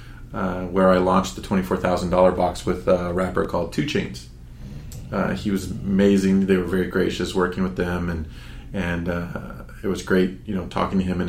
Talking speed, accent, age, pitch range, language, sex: 205 wpm, American, 30-49, 90-95 Hz, English, male